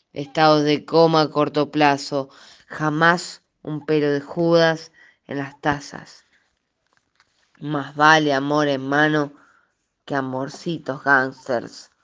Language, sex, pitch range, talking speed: Spanish, female, 150-170 Hz, 110 wpm